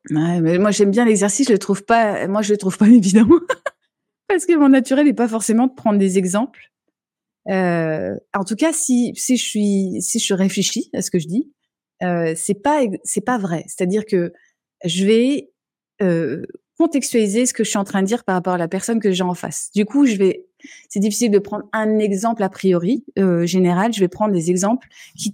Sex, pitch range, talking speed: female, 180-230 Hz, 220 wpm